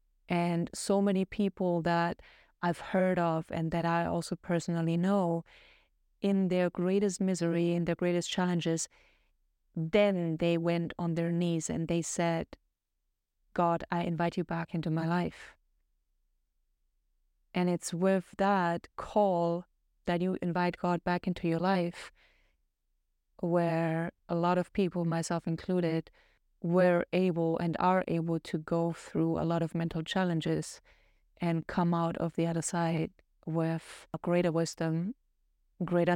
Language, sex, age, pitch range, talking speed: English, female, 30-49, 165-175 Hz, 140 wpm